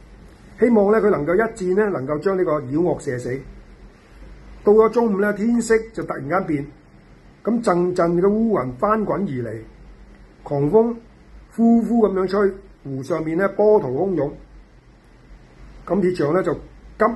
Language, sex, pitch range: Chinese, male, 160-210 Hz